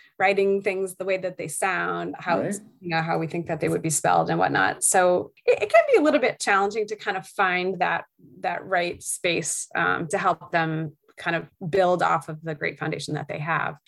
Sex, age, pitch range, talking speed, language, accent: female, 20-39, 160-190 Hz, 225 wpm, English, American